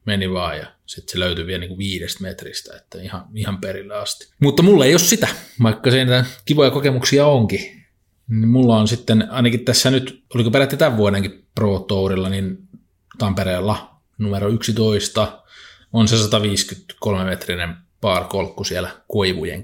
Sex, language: male, Finnish